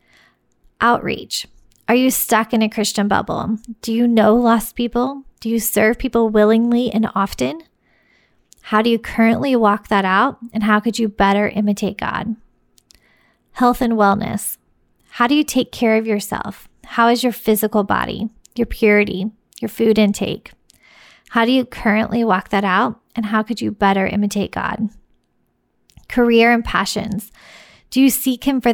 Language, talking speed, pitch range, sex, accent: English, 160 wpm, 205-235 Hz, female, American